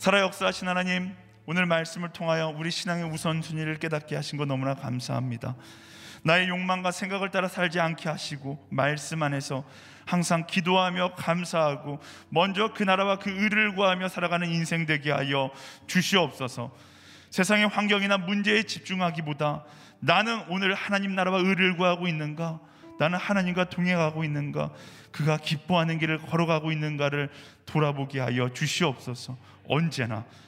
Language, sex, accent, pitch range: Korean, male, native, 135-180 Hz